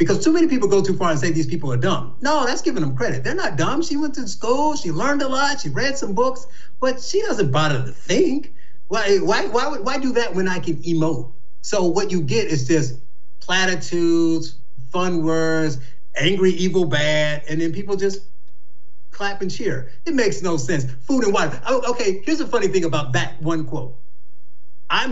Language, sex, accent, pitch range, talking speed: English, male, American, 155-235 Hz, 205 wpm